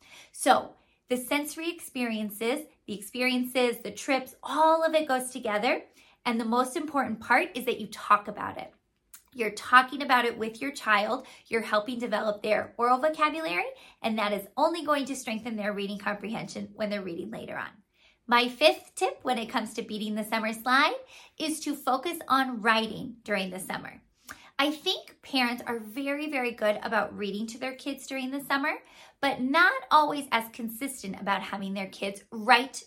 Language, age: English, 30-49